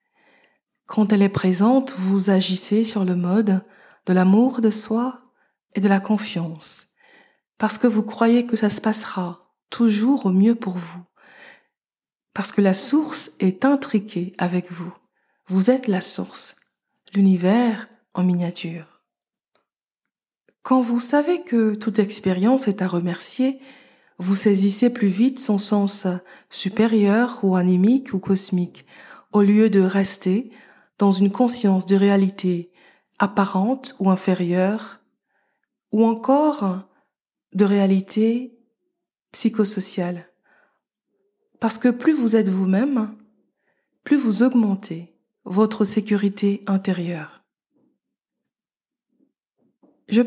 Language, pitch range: French, 190-235 Hz